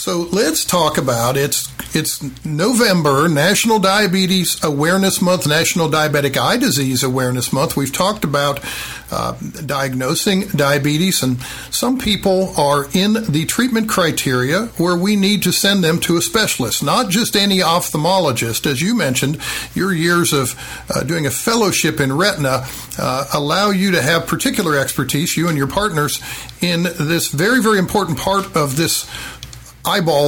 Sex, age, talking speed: male, 50-69, 155 wpm